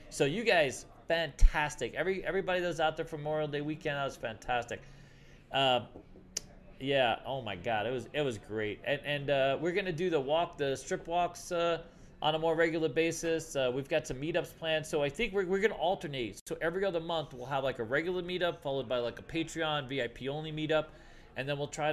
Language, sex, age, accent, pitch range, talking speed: English, male, 30-49, American, 130-170 Hz, 215 wpm